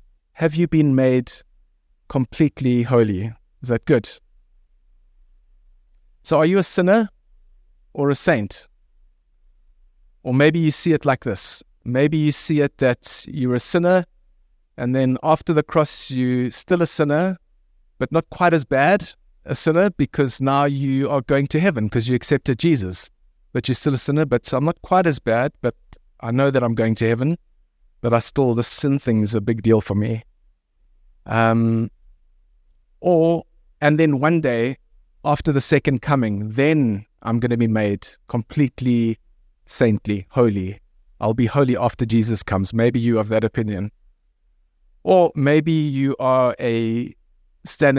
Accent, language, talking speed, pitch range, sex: South African, English, 160 wpm, 100-140 Hz, male